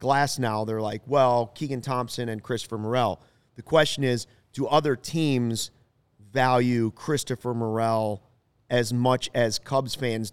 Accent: American